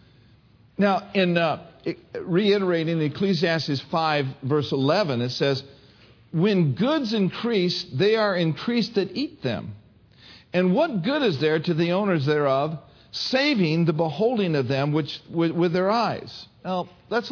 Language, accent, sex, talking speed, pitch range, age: English, American, male, 140 wpm, 145-225 Hz, 50-69